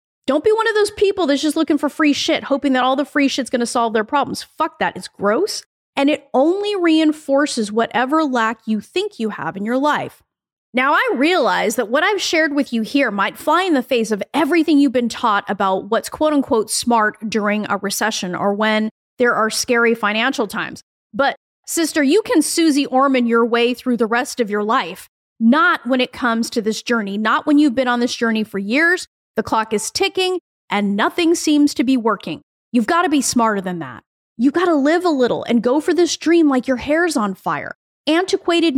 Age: 30-49